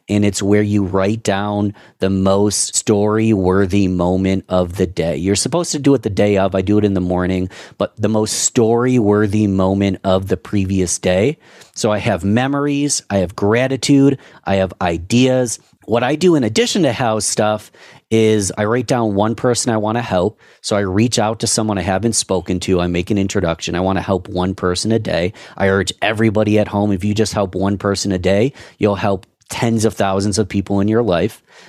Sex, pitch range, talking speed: male, 95-115 Hz, 205 wpm